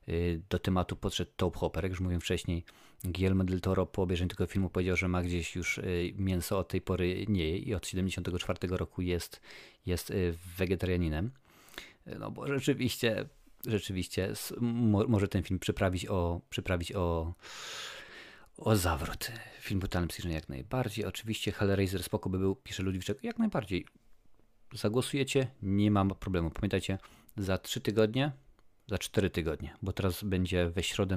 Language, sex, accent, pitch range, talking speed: Polish, male, native, 90-105 Hz, 150 wpm